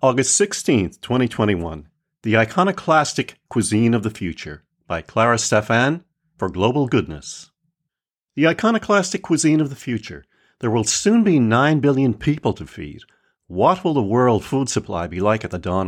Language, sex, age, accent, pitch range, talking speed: English, male, 50-69, American, 90-145 Hz, 155 wpm